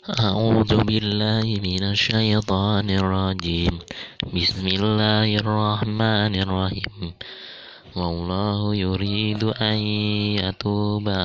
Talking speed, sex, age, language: 70 wpm, male, 20-39, Indonesian